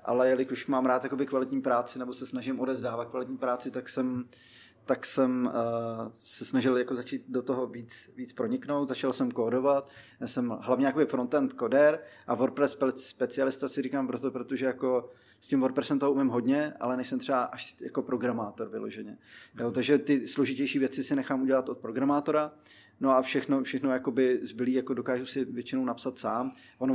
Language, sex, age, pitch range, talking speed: Czech, male, 20-39, 125-135 Hz, 175 wpm